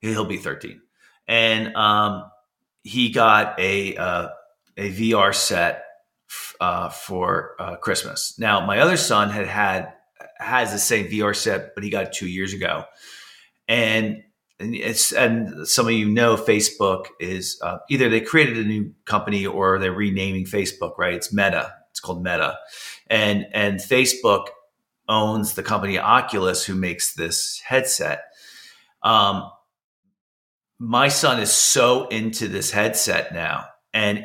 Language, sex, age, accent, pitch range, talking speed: English, male, 40-59, American, 100-115 Hz, 145 wpm